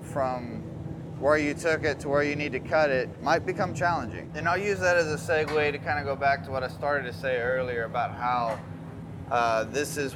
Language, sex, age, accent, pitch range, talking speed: English, male, 20-39, American, 115-150 Hz, 230 wpm